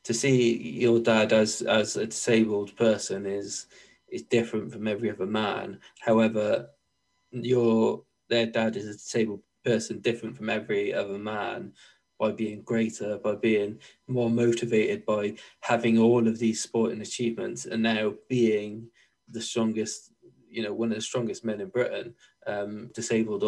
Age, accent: 20-39, British